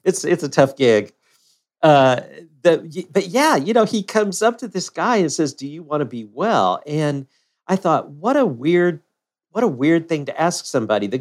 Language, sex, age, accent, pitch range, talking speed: English, male, 50-69, American, 125-165 Hz, 210 wpm